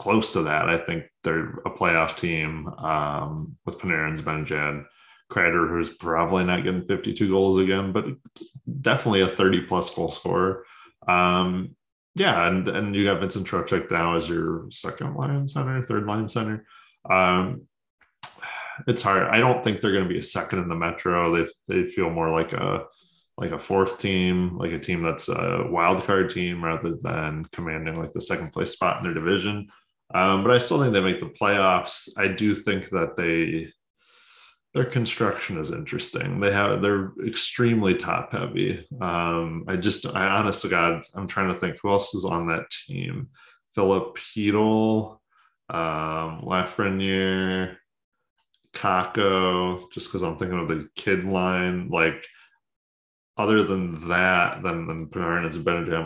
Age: 20-39